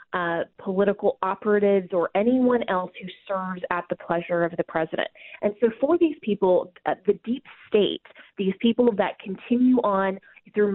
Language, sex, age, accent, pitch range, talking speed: English, female, 20-39, American, 185-240 Hz, 155 wpm